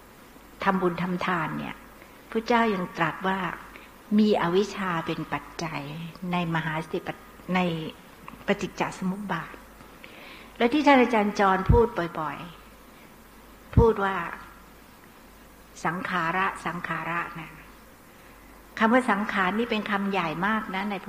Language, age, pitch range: Thai, 60-79, 180-220 Hz